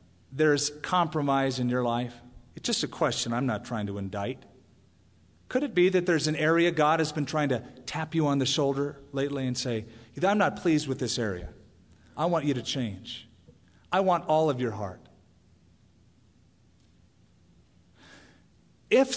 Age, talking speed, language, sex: 40-59, 165 wpm, English, male